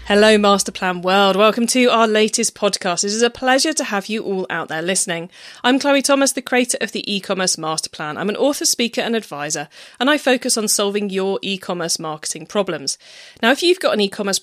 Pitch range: 185-265 Hz